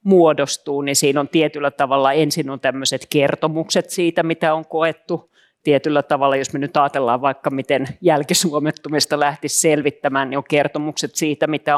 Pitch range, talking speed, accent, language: 140-160 Hz, 155 wpm, native, Finnish